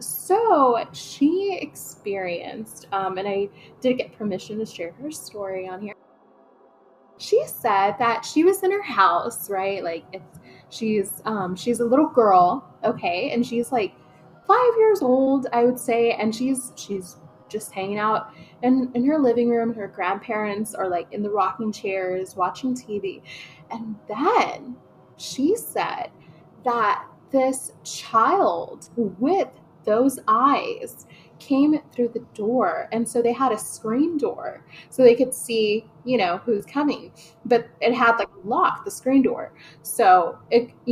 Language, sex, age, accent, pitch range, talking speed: English, female, 10-29, American, 195-260 Hz, 150 wpm